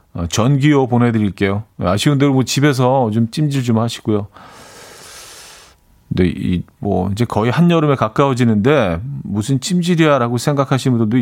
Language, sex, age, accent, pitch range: Korean, male, 40-59, native, 100-145 Hz